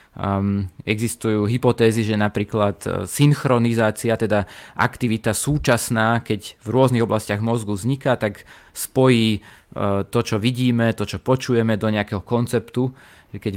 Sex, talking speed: male, 125 wpm